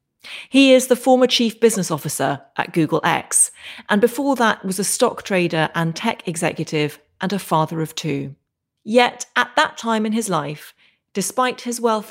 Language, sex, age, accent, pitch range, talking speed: English, female, 30-49, British, 155-220 Hz, 175 wpm